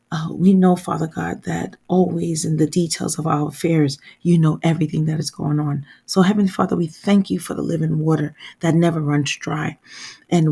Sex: female